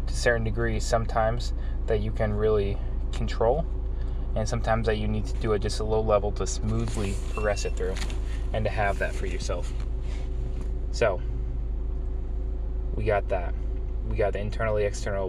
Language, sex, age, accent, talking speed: English, male, 20-39, American, 160 wpm